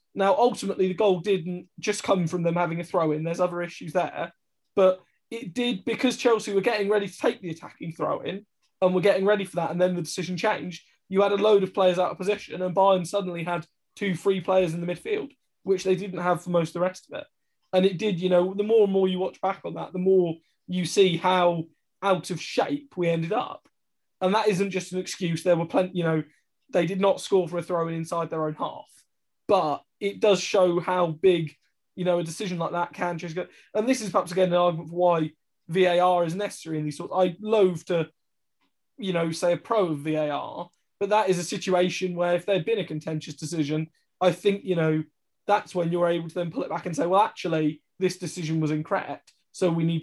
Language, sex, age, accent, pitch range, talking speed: English, male, 20-39, British, 170-195 Hz, 230 wpm